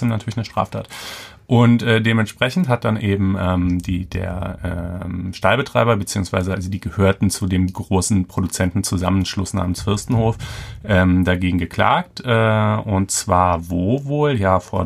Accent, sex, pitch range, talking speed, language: German, male, 90-105 Hz, 135 wpm, German